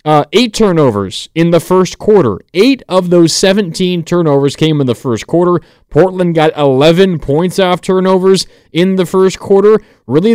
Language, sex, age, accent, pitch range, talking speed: English, male, 30-49, American, 135-180 Hz, 160 wpm